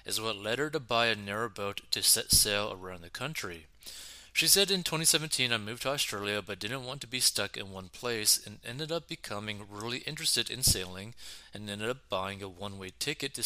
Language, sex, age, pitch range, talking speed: English, male, 30-49, 100-125 Hz, 210 wpm